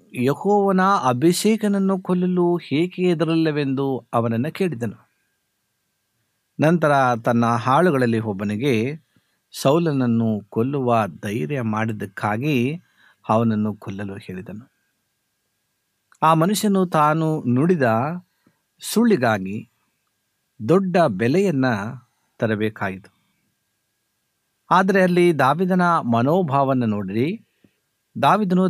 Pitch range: 115-175 Hz